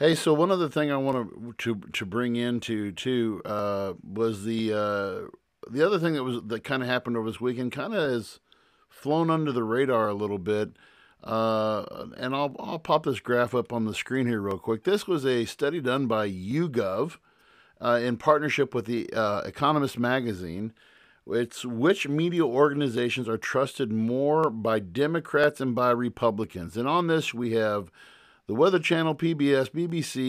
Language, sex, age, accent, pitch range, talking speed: English, male, 50-69, American, 115-150 Hz, 180 wpm